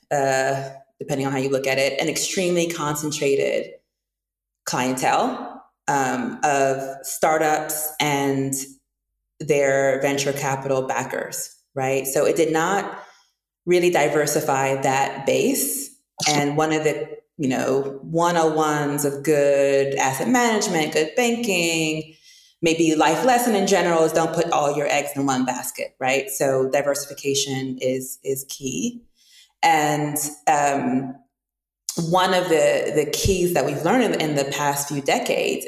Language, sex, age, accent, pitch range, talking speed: English, female, 20-39, American, 140-175 Hz, 130 wpm